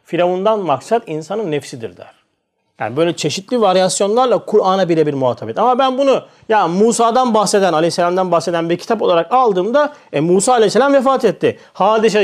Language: Turkish